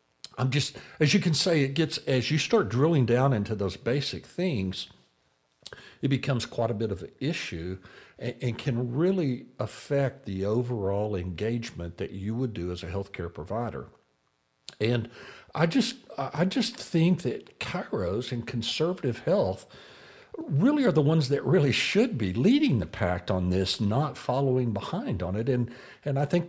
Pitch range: 100-140 Hz